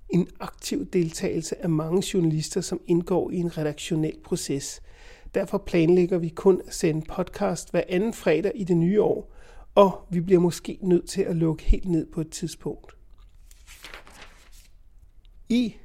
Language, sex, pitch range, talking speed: Danish, male, 165-195 Hz, 150 wpm